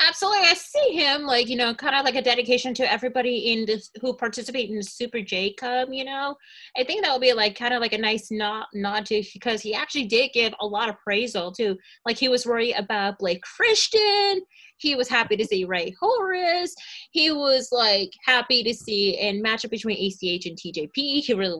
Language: English